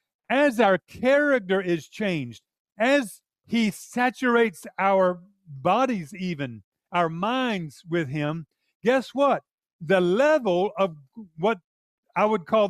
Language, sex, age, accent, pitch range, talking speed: English, male, 50-69, American, 180-250 Hz, 115 wpm